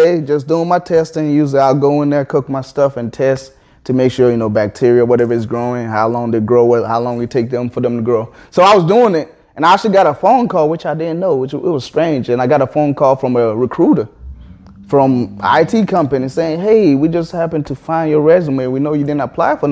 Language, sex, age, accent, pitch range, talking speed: English, male, 20-39, American, 130-165 Hz, 255 wpm